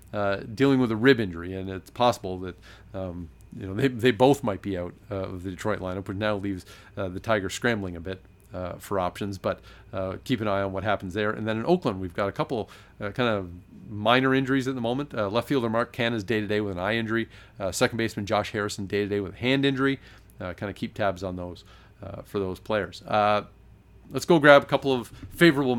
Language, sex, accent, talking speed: English, male, American, 235 wpm